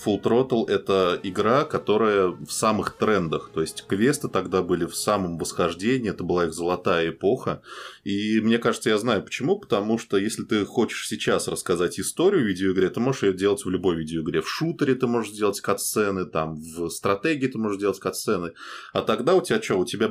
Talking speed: 195 wpm